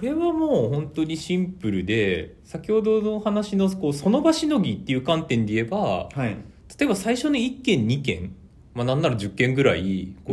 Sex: male